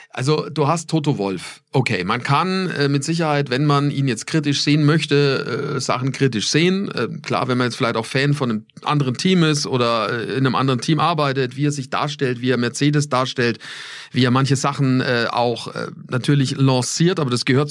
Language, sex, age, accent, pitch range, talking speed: German, male, 40-59, German, 135-160 Hz, 210 wpm